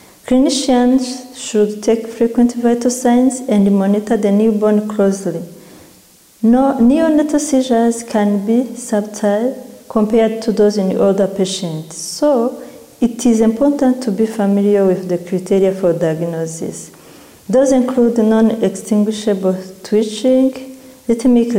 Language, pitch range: English, 190-240 Hz